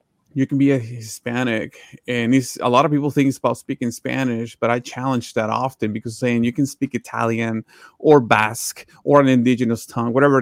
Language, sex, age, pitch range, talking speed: English, male, 30-49, 120-135 Hz, 190 wpm